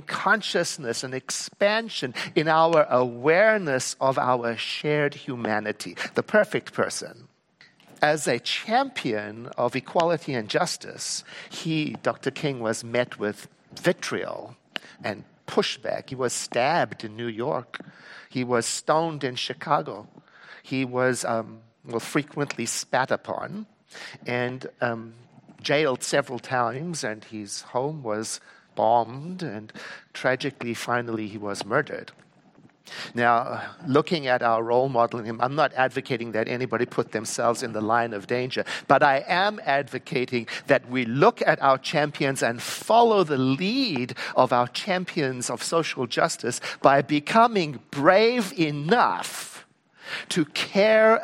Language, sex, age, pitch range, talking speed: English, male, 50-69, 115-155 Hz, 125 wpm